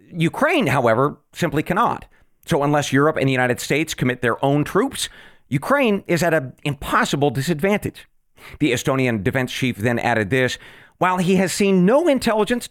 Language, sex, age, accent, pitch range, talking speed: English, male, 40-59, American, 125-190 Hz, 160 wpm